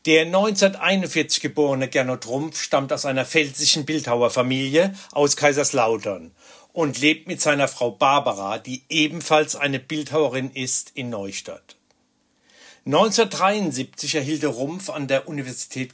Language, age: German, 60-79